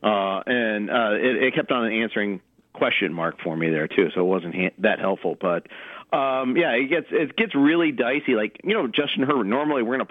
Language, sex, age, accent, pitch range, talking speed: English, male, 50-69, American, 95-120 Hz, 225 wpm